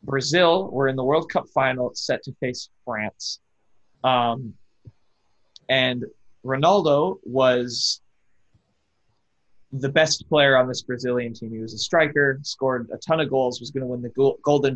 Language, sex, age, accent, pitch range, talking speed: English, male, 20-39, American, 115-140 Hz, 150 wpm